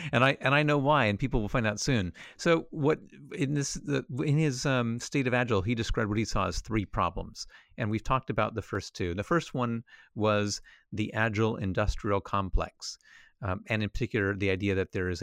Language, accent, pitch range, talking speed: English, American, 100-125 Hz, 215 wpm